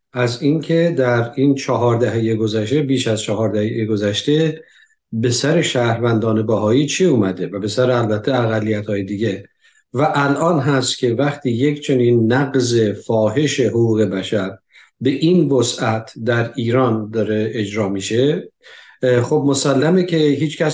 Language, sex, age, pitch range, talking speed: Persian, male, 50-69, 115-140 Hz, 135 wpm